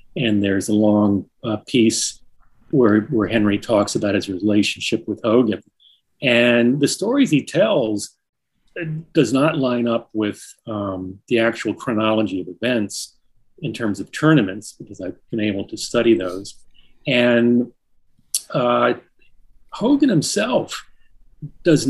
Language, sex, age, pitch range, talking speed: German, male, 40-59, 105-125 Hz, 130 wpm